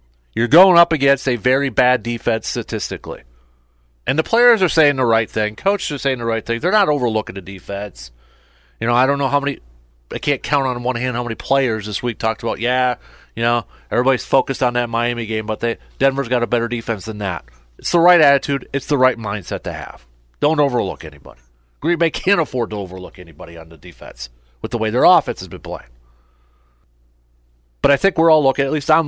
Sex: male